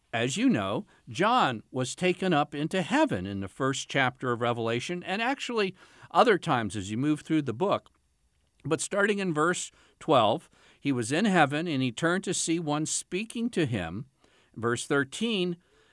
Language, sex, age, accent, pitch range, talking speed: English, male, 50-69, American, 125-180 Hz, 170 wpm